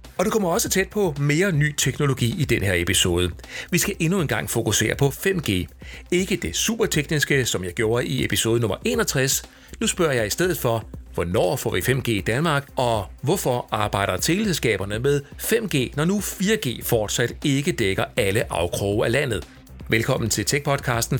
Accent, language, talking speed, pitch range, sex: native, Danish, 175 wpm, 110-160 Hz, male